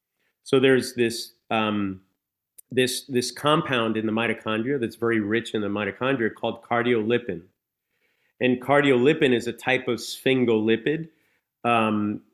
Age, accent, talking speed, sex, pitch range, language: 30-49, American, 115 wpm, male, 110-125 Hz, English